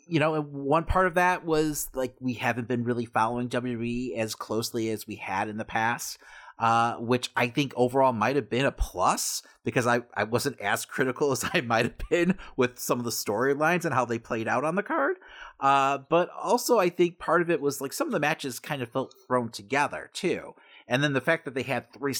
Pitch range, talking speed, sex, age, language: 120-160 Hz, 225 wpm, male, 30-49, English